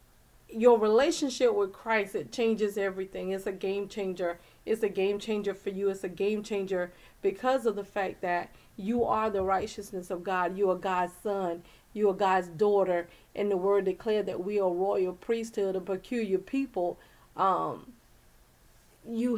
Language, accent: English, American